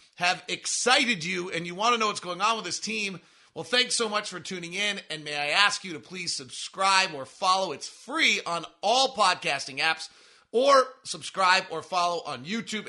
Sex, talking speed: male, 200 wpm